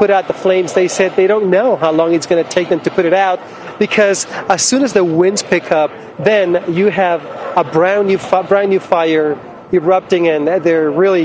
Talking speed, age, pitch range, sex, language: 225 wpm, 40-59, 165-200 Hz, male, English